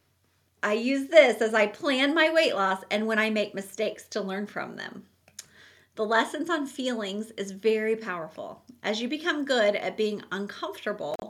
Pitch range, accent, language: 200-255 Hz, American, English